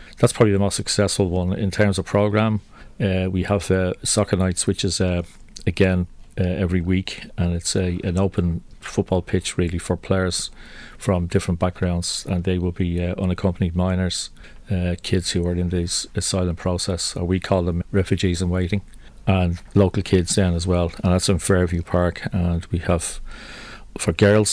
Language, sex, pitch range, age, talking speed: English, male, 90-100 Hz, 40-59, 175 wpm